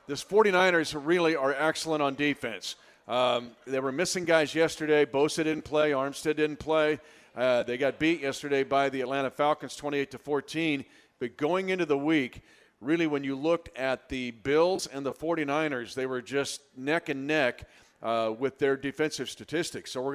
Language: English